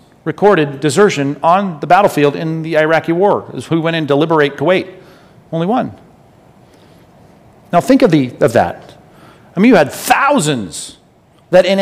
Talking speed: 160 wpm